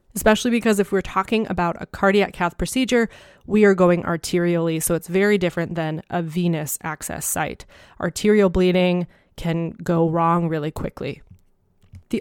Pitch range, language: 165-190 Hz, English